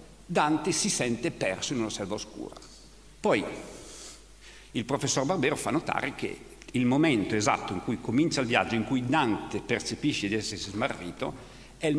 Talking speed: 160 wpm